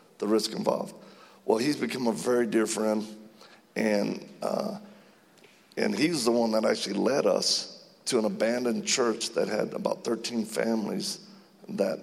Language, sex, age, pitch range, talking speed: English, male, 50-69, 110-125 Hz, 145 wpm